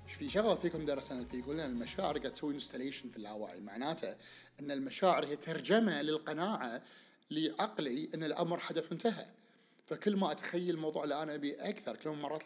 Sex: male